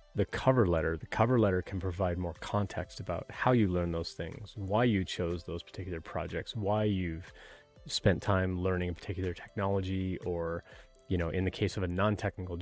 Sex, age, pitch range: male, 30-49, 85-100 Hz